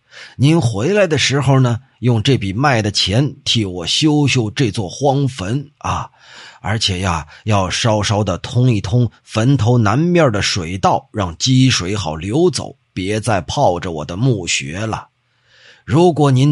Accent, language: native, Chinese